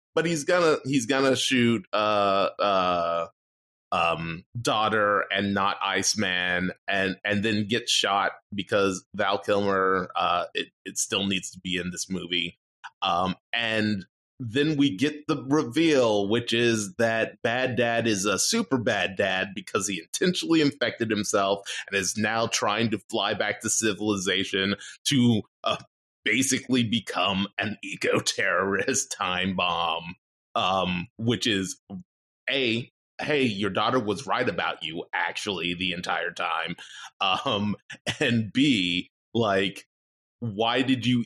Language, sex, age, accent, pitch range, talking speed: English, male, 30-49, American, 95-120 Hz, 135 wpm